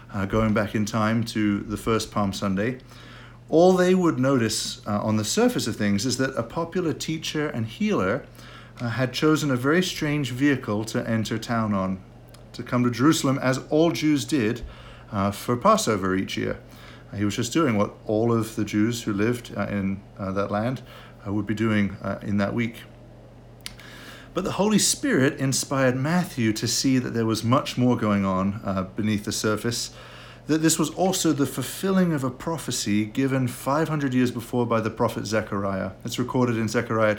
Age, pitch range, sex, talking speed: 50-69, 110-135 Hz, male, 185 wpm